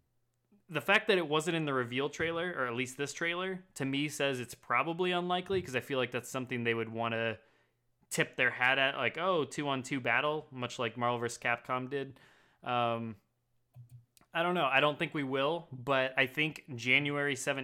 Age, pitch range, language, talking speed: 20-39, 115-140 Hz, English, 195 wpm